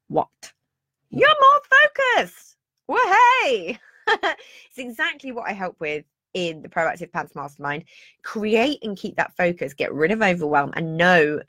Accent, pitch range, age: British, 165-240 Hz, 20-39